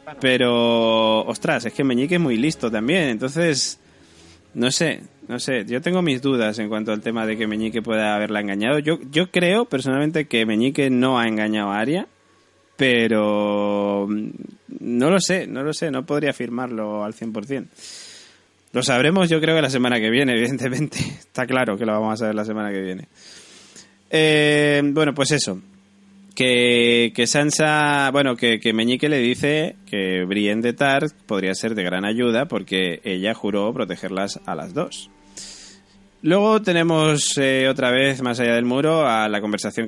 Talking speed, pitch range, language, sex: 165 wpm, 105-135 Hz, Spanish, male